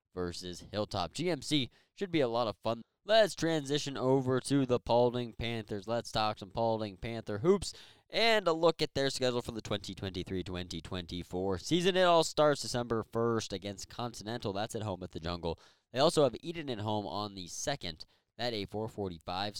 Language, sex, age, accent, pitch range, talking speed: English, male, 20-39, American, 100-125 Hz, 175 wpm